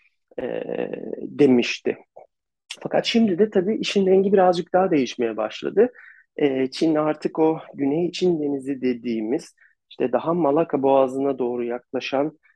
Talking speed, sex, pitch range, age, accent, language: 125 wpm, male, 120-165 Hz, 40-59, native, Turkish